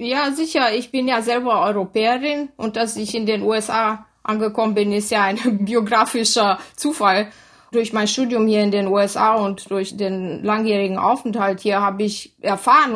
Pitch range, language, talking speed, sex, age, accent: 200-235 Hz, German, 165 wpm, female, 20-39, German